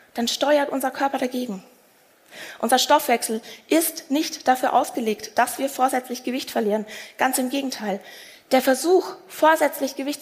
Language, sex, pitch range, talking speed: German, female, 215-275 Hz, 135 wpm